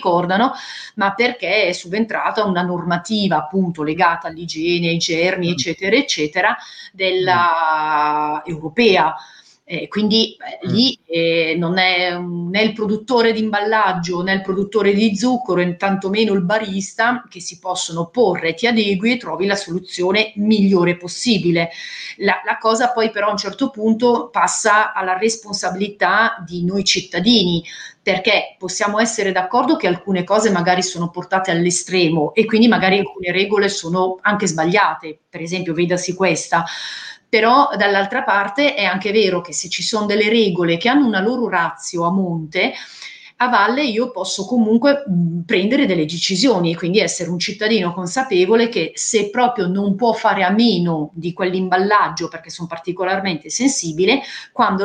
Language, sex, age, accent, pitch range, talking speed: Italian, female, 30-49, native, 175-220 Hz, 150 wpm